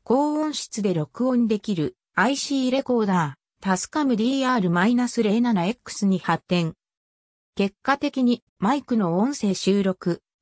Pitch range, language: 180-255 Hz, Japanese